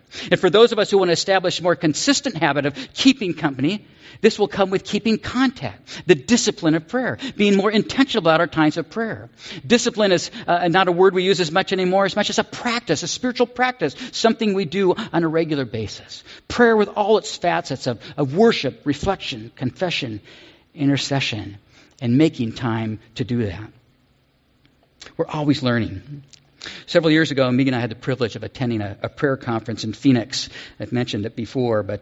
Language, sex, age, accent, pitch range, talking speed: English, male, 50-69, American, 125-185 Hz, 190 wpm